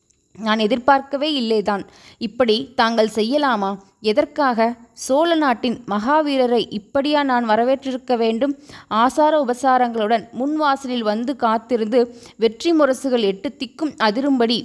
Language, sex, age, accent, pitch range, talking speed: Tamil, female, 20-39, native, 210-265 Hz, 100 wpm